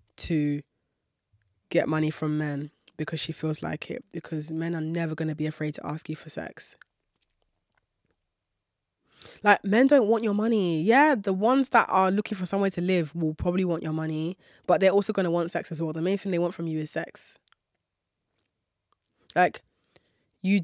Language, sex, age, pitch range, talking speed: English, female, 20-39, 160-190 Hz, 185 wpm